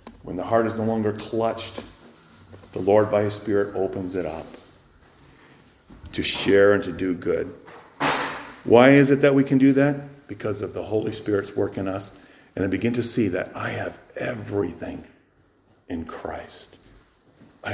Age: 50-69